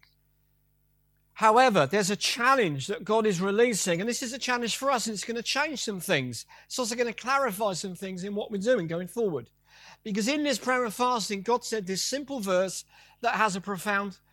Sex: male